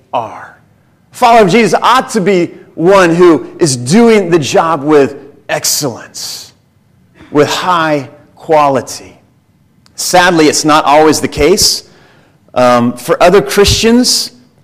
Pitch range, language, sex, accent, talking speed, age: 155-200 Hz, English, male, American, 115 wpm, 40-59